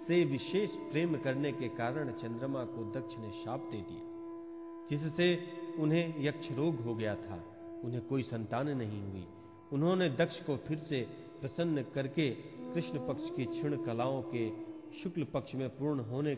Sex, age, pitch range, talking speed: male, 40-59, 115-160 Hz, 160 wpm